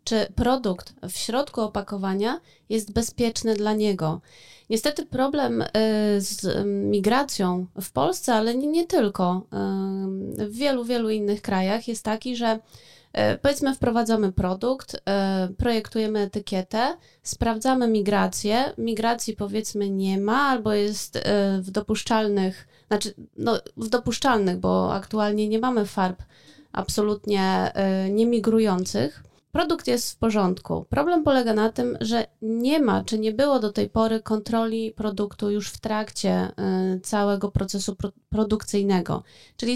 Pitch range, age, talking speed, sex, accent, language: 195-230 Hz, 20-39, 120 wpm, female, native, Polish